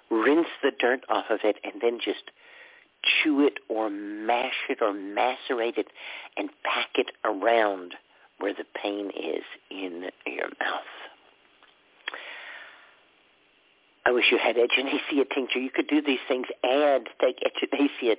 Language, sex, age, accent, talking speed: English, male, 50-69, American, 140 wpm